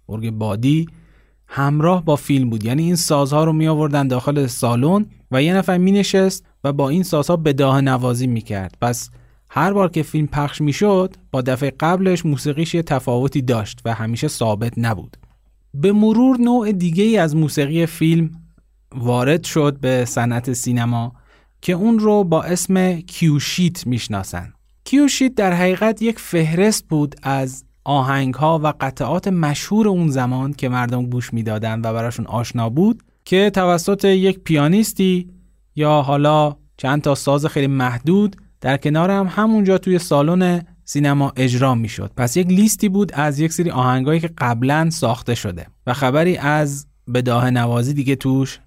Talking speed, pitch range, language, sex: 155 wpm, 130-180 Hz, Persian, male